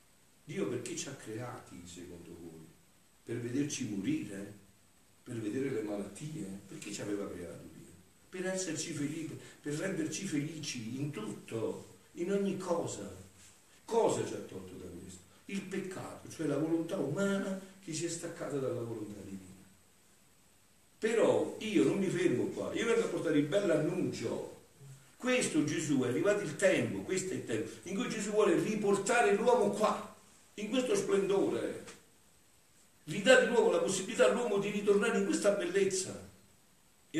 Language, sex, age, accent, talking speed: Italian, male, 60-79, native, 155 wpm